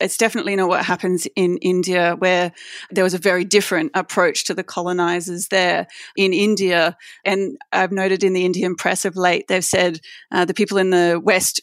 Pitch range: 180-200 Hz